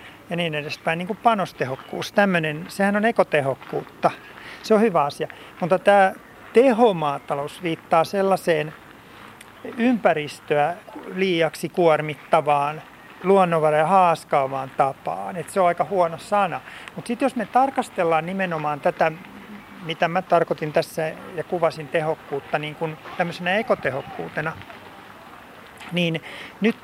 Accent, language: native, Finnish